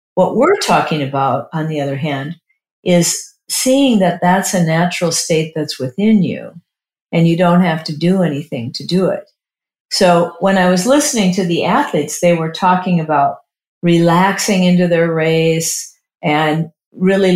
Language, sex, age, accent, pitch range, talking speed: English, female, 50-69, American, 160-190 Hz, 160 wpm